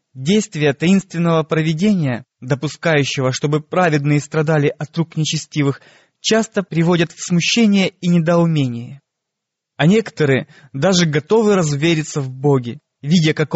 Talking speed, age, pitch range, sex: 110 wpm, 20-39, 140-180 Hz, male